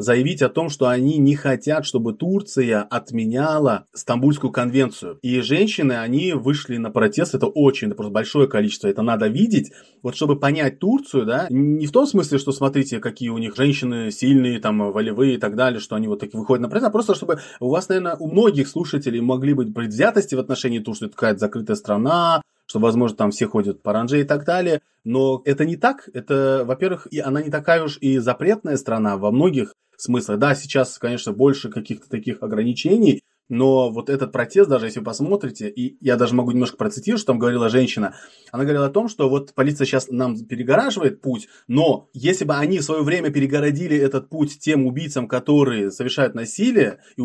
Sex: male